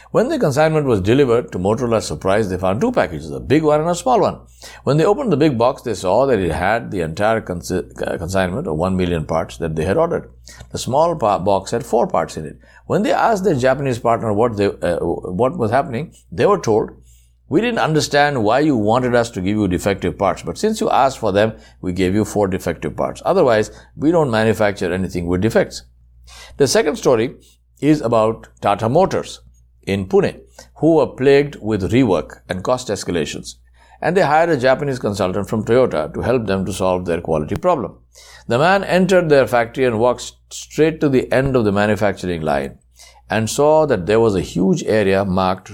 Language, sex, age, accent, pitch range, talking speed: English, male, 60-79, Indian, 90-130 Hz, 200 wpm